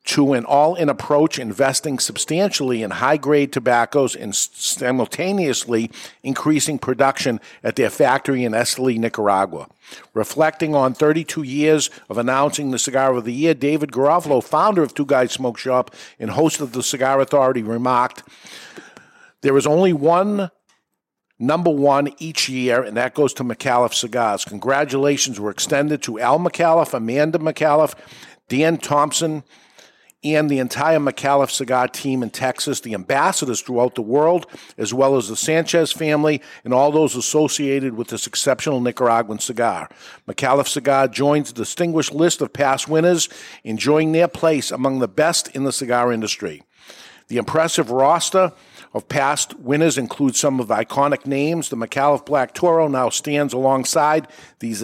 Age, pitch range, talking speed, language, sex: 50-69, 125-155 Hz, 150 wpm, English, male